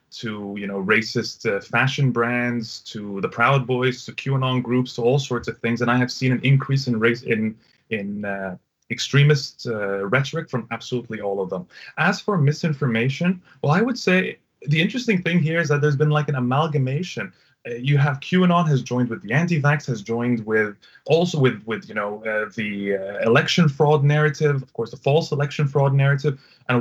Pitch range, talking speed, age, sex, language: 115-150 Hz, 195 wpm, 20-39, male, English